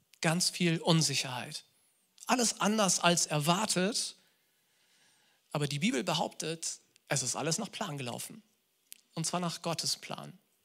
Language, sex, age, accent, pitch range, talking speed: German, male, 40-59, German, 165-210 Hz, 125 wpm